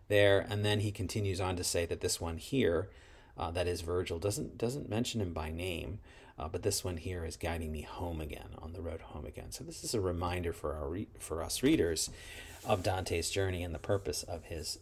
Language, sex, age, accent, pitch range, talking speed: English, male, 30-49, American, 85-100 Hz, 225 wpm